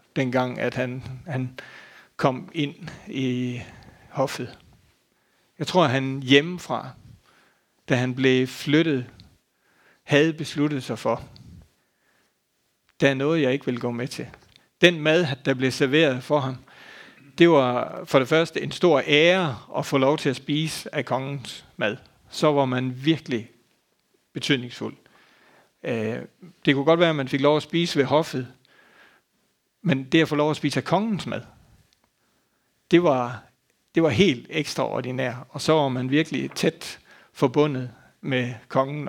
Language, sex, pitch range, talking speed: Danish, male, 130-155 Hz, 150 wpm